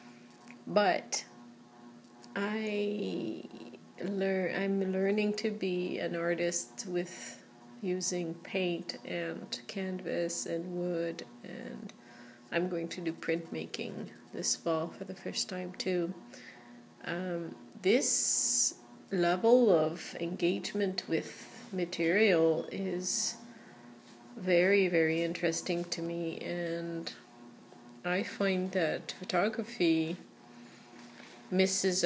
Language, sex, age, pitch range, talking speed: English, female, 30-49, 165-190 Hz, 90 wpm